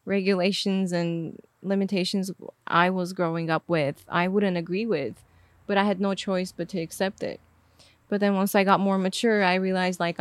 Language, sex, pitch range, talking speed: English, female, 180-215 Hz, 180 wpm